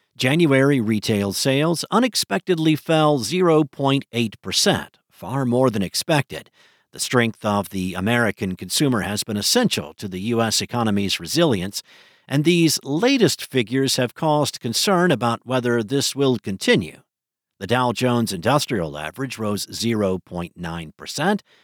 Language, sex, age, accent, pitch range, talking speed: English, male, 50-69, American, 115-160 Hz, 125 wpm